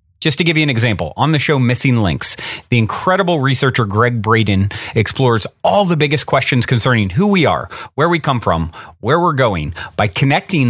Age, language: 30-49, English